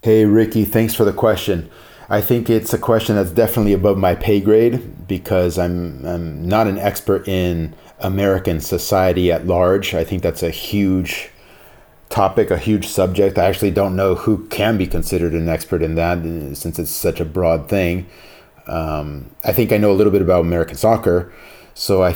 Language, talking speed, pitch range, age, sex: English, 185 wpm, 85-100 Hz, 30-49, male